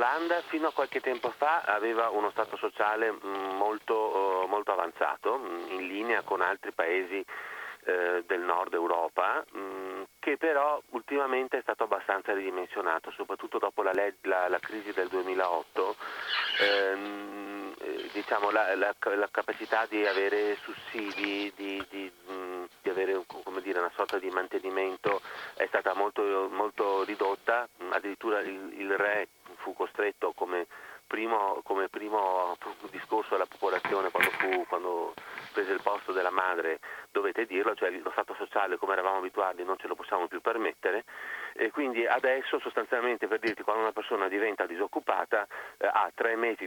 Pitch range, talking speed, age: 95-115 Hz, 135 wpm, 40-59